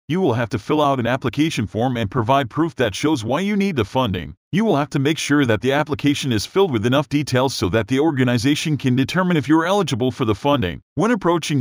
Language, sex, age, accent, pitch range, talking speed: English, male, 40-59, American, 125-160 Hz, 250 wpm